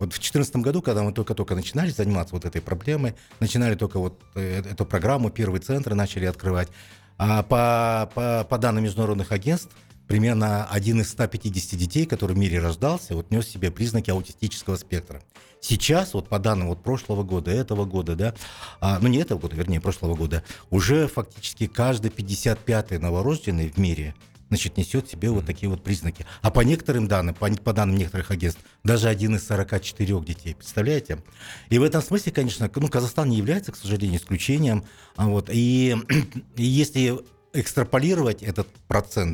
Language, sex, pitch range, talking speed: Russian, male, 95-120 Hz, 165 wpm